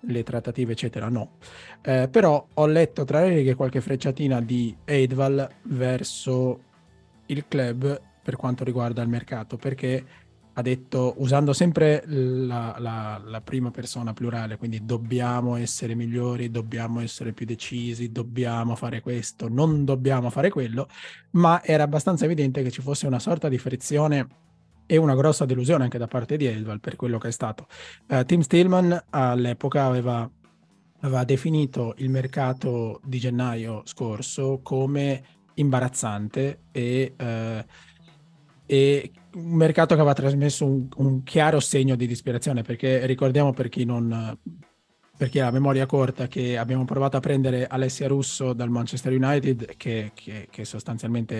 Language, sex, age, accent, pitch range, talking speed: Italian, male, 20-39, native, 120-140 Hz, 145 wpm